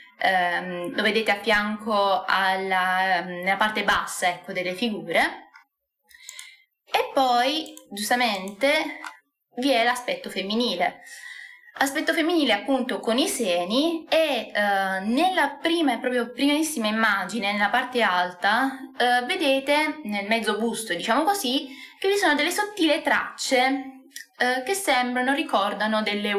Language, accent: Italian, native